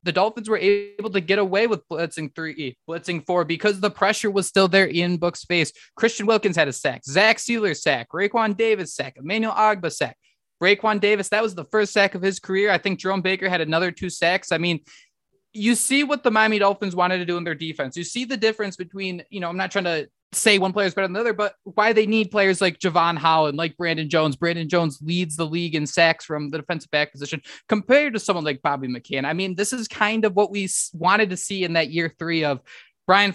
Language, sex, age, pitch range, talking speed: English, male, 20-39, 160-200 Hz, 240 wpm